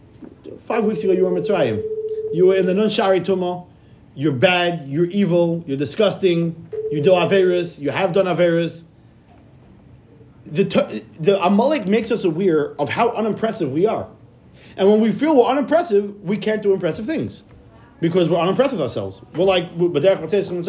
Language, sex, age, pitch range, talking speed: English, male, 40-59, 145-215 Hz, 160 wpm